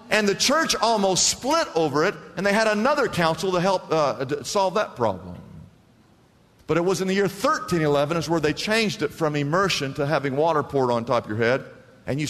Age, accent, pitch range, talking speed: 50-69, American, 135-200 Hz, 210 wpm